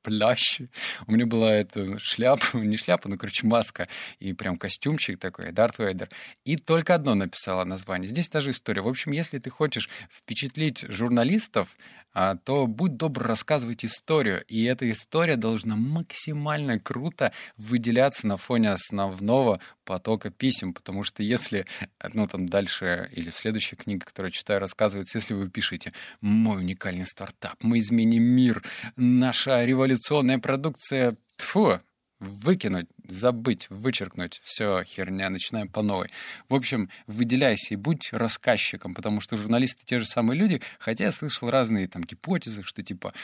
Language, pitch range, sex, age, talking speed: Russian, 100-130 Hz, male, 20-39, 145 wpm